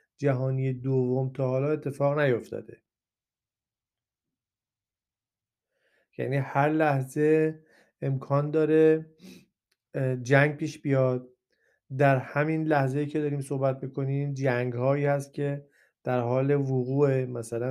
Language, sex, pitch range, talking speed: Persian, male, 125-145 Hz, 100 wpm